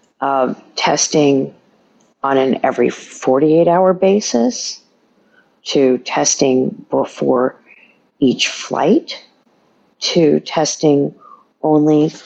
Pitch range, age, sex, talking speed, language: 140-180 Hz, 50-69, female, 75 wpm, English